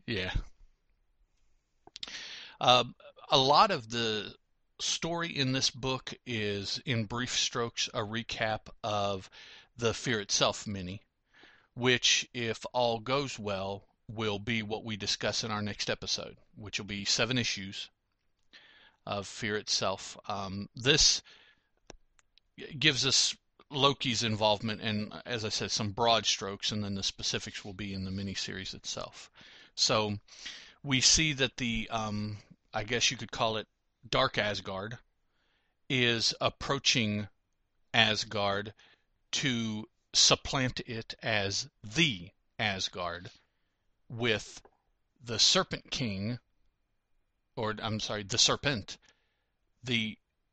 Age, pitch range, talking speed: 40-59, 100-120 Hz, 120 wpm